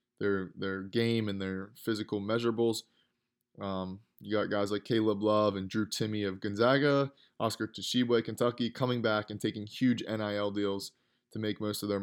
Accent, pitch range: American, 95-110 Hz